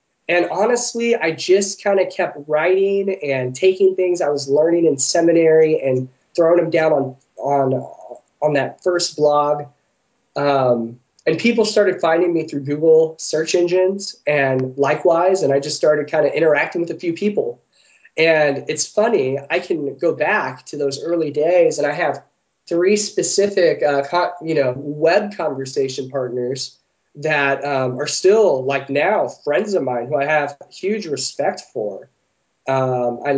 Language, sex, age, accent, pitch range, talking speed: English, male, 20-39, American, 135-180 Hz, 160 wpm